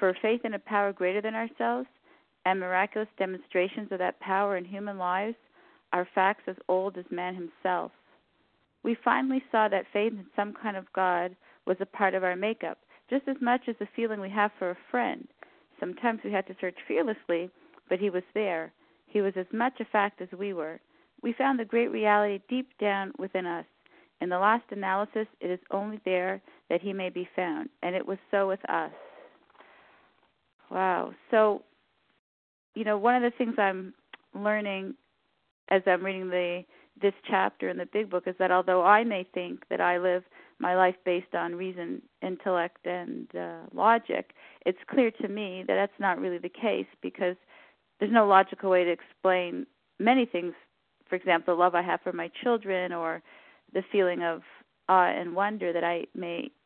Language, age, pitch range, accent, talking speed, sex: English, 40-59, 180-220 Hz, American, 185 wpm, female